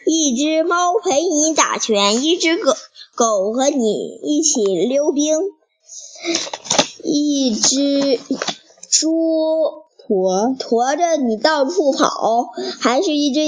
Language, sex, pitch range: Chinese, male, 270-380 Hz